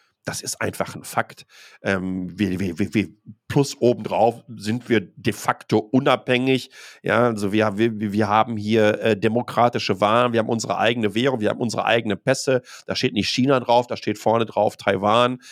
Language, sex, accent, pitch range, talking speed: German, male, German, 110-130 Hz, 180 wpm